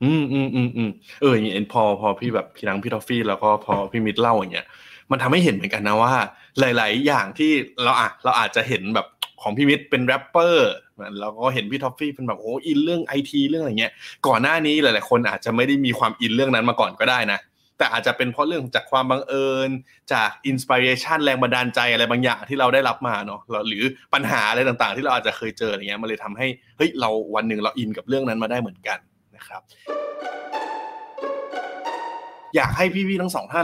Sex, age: male, 20-39